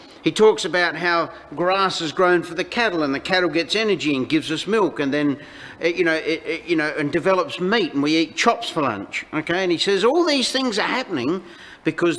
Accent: Australian